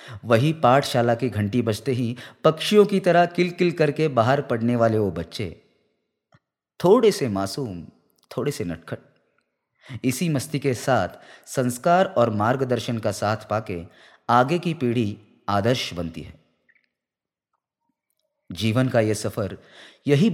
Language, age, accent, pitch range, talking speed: Hindi, 30-49, native, 115-160 Hz, 125 wpm